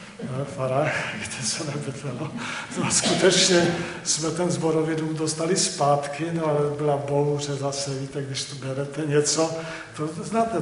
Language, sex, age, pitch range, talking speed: Czech, male, 50-69, 135-165 Hz, 115 wpm